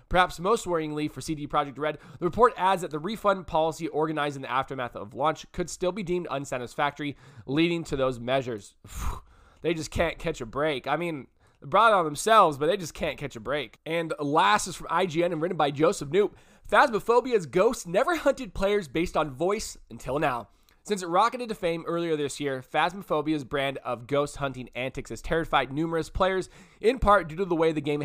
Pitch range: 135-175 Hz